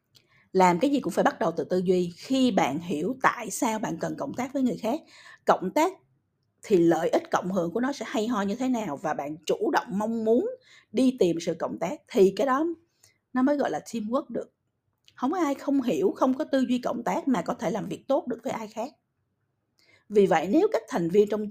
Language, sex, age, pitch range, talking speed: Vietnamese, female, 50-69, 175-255 Hz, 235 wpm